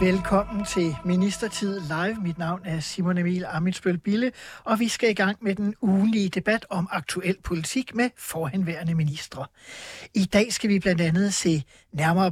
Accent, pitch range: native, 170-225 Hz